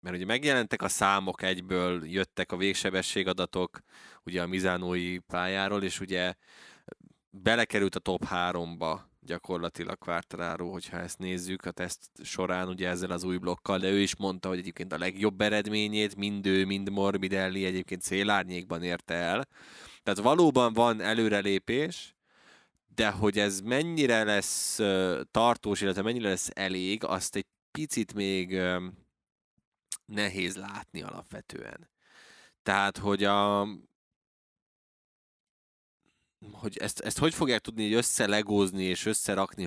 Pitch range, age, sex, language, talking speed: 90-105 Hz, 20-39, male, Hungarian, 125 wpm